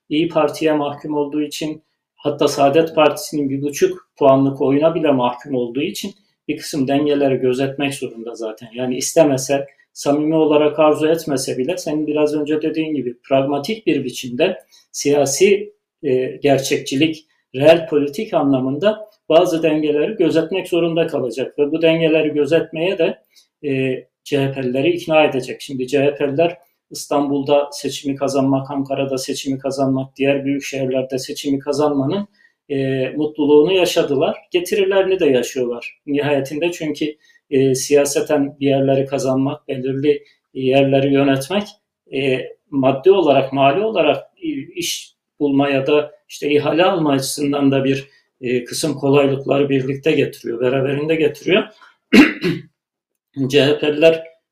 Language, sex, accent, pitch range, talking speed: Turkish, male, native, 135-155 Hz, 120 wpm